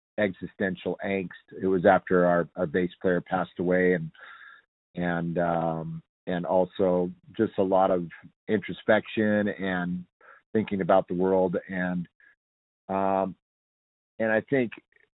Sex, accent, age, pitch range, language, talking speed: male, American, 40-59, 85-95 Hz, English, 120 wpm